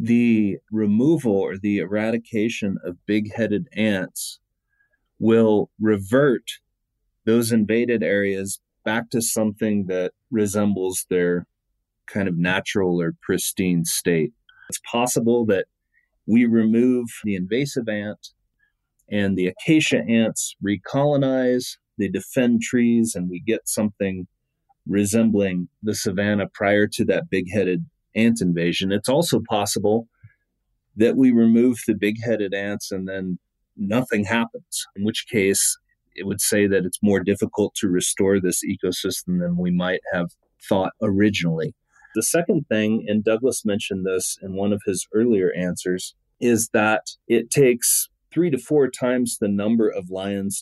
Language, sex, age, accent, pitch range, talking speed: English, male, 30-49, American, 95-115 Hz, 135 wpm